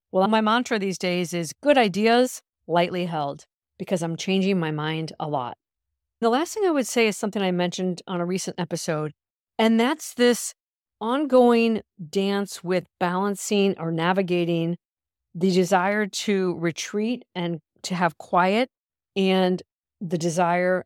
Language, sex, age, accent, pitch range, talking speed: English, female, 50-69, American, 165-210 Hz, 145 wpm